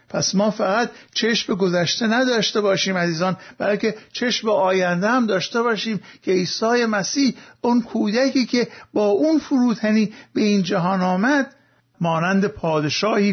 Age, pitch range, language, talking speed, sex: 50-69, 185-235 Hz, Persian, 130 wpm, male